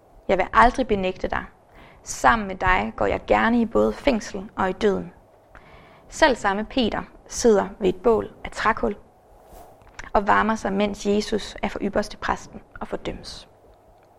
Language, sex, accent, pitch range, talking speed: Danish, female, native, 195-230 Hz, 155 wpm